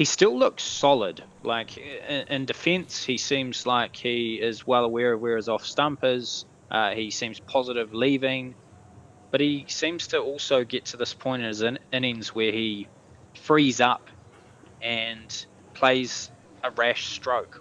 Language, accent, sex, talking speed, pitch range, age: English, Australian, male, 155 wpm, 105-130 Hz, 20-39